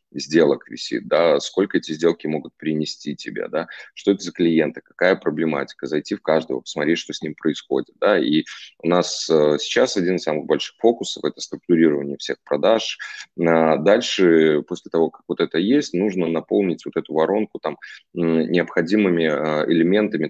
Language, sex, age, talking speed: Russian, male, 20-39, 160 wpm